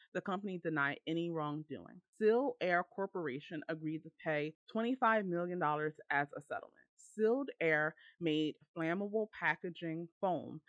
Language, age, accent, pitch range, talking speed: English, 30-49, American, 150-195 Hz, 125 wpm